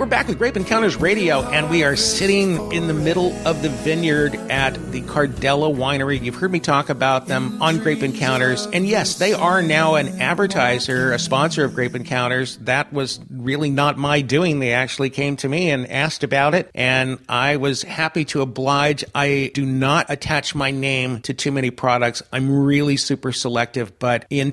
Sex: male